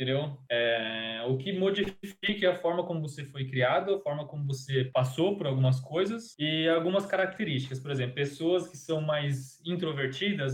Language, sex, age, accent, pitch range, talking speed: Portuguese, male, 20-39, Brazilian, 135-170 Hz, 160 wpm